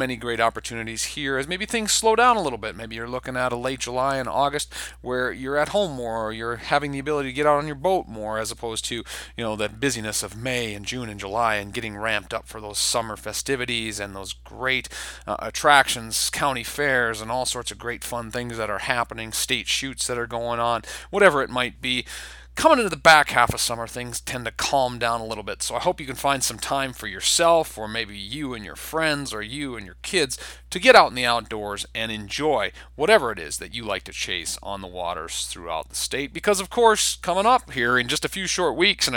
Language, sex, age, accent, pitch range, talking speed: English, male, 30-49, American, 110-135 Hz, 240 wpm